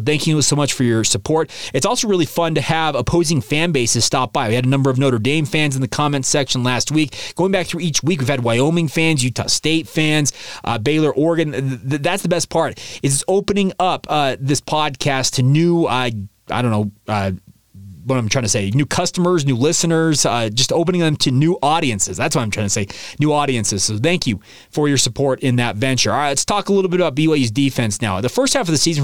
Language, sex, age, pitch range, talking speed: English, male, 30-49, 125-170 Hz, 235 wpm